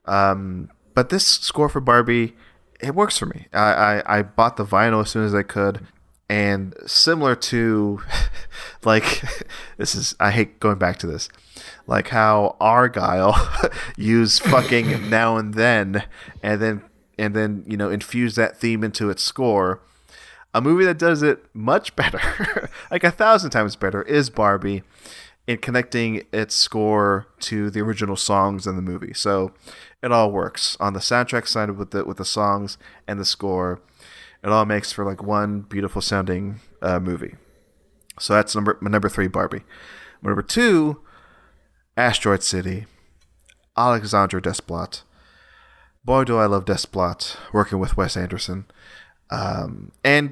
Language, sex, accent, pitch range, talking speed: English, male, American, 100-115 Hz, 150 wpm